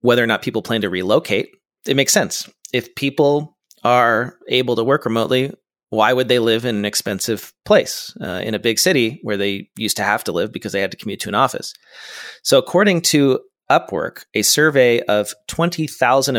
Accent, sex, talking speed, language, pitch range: American, male, 195 wpm, English, 100-125 Hz